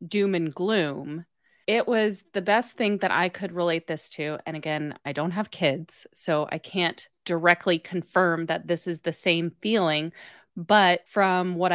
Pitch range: 165-205 Hz